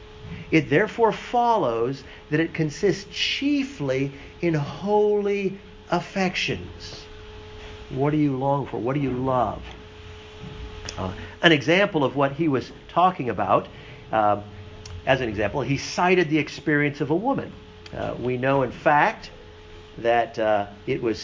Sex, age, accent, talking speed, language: male, 50-69, American, 135 wpm, English